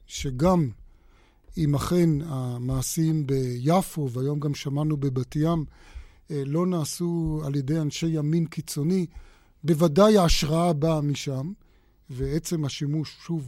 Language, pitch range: Hebrew, 145-180 Hz